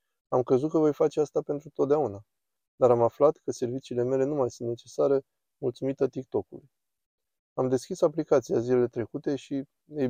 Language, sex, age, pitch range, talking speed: Romanian, male, 20-39, 120-150 Hz, 160 wpm